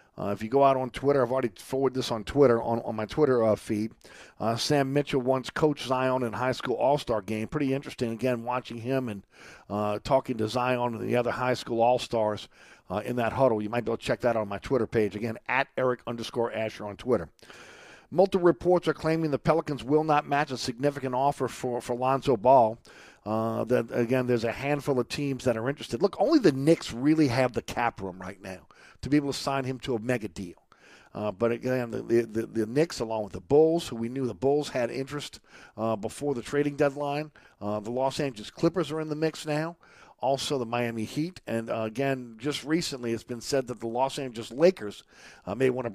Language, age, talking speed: English, 50-69, 225 wpm